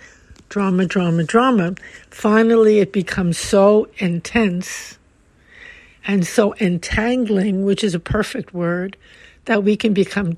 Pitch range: 185-230 Hz